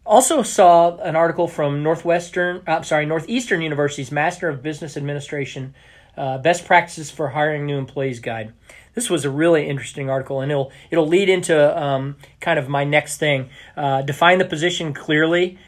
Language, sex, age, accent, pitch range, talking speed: English, male, 40-59, American, 140-165 Hz, 170 wpm